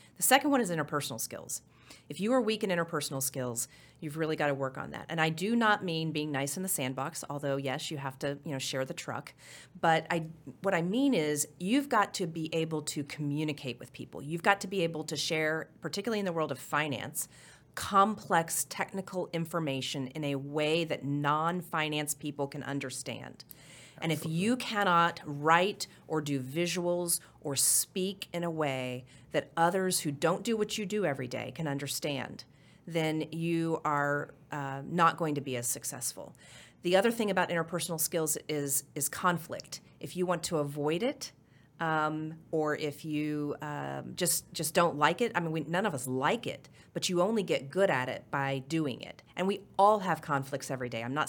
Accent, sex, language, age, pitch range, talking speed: American, female, English, 40-59, 140-175 Hz, 195 wpm